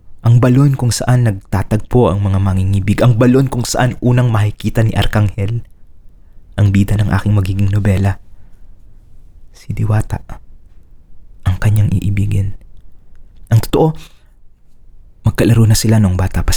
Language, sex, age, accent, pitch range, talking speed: English, male, 20-39, Filipino, 95-115 Hz, 125 wpm